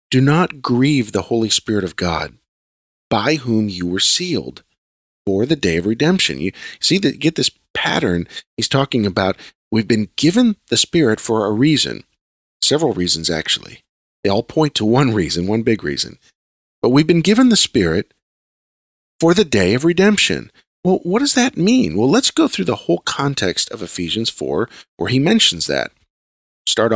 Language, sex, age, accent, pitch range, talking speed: English, male, 40-59, American, 90-145 Hz, 175 wpm